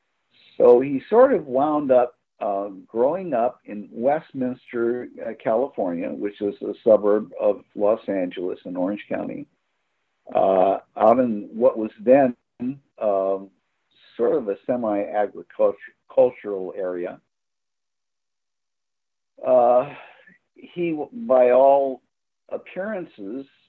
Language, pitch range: English, 110-140 Hz